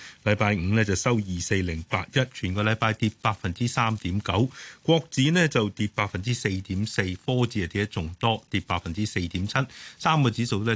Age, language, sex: 30-49, Chinese, male